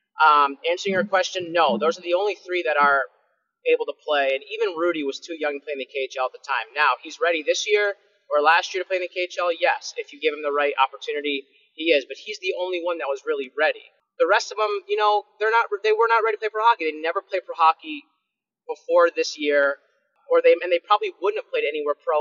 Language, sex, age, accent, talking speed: English, male, 30-49, American, 255 wpm